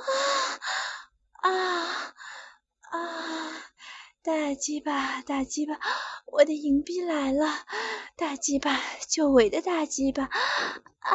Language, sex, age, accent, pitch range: Chinese, female, 20-39, native, 260-335 Hz